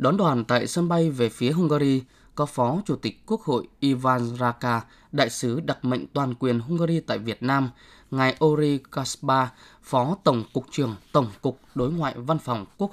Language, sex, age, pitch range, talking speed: Vietnamese, male, 20-39, 120-160 Hz, 185 wpm